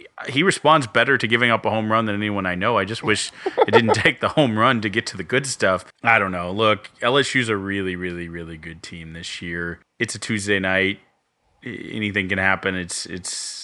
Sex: male